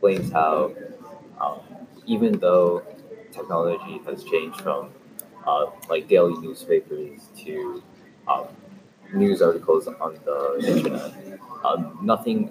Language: English